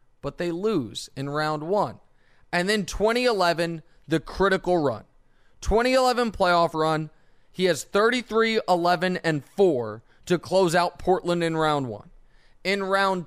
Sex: male